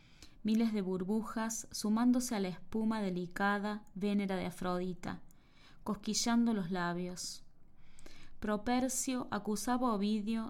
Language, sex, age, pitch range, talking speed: Spanish, female, 20-39, 180-225 Hz, 105 wpm